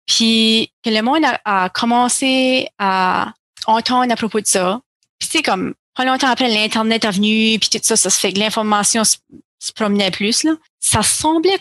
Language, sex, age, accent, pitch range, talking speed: French, female, 30-49, Canadian, 195-235 Hz, 195 wpm